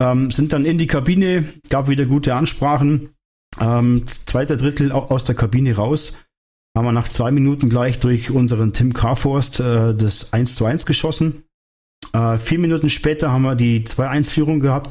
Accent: German